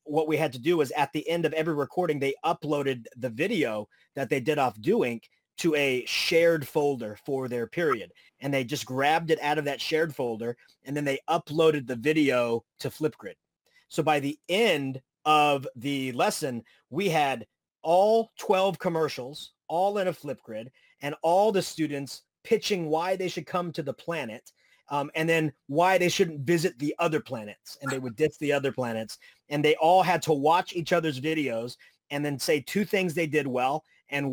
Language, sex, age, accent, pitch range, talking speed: English, male, 30-49, American, 135-165 Hz, 190 wpm